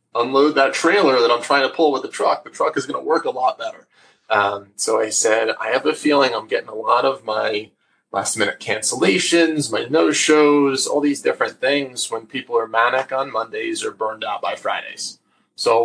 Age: 20-39